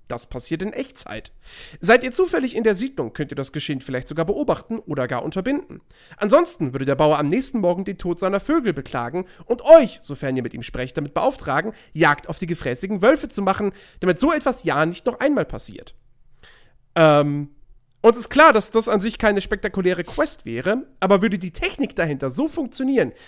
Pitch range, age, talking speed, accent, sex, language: 150-235 Hz, 40-59, 195 wpm, German, male, German